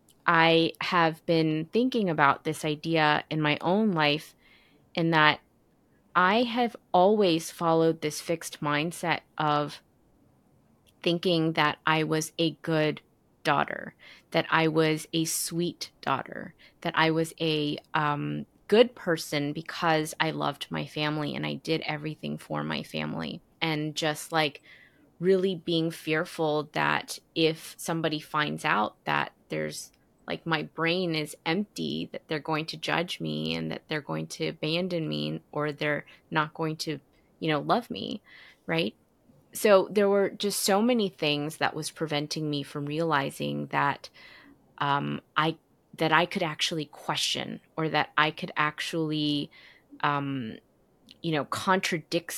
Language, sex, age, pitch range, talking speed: English, female, 20-39, 150-170 Hz, 140 wpm